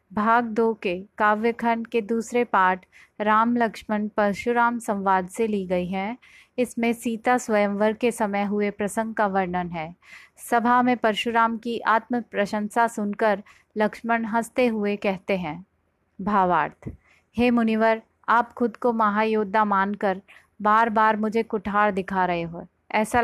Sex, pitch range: female, 205-230 Hz